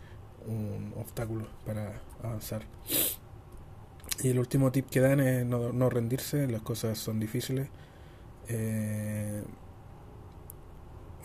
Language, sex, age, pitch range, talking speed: Spanish, male, 20-39, 110-120 Hz, 100 wpm